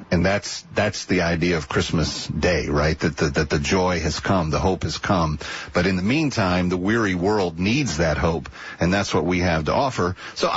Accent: American